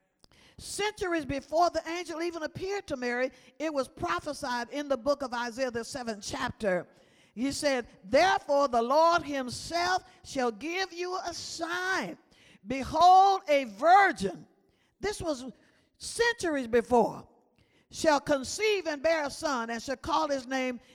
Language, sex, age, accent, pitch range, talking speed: English, female, 50-69, American, 240-315 Hz, 140 wpm